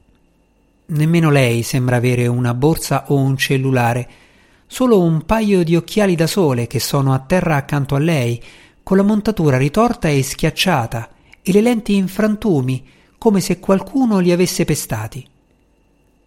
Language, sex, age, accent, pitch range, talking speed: Italian, male, 50-69, native, 125-180 Hz, 150 wpm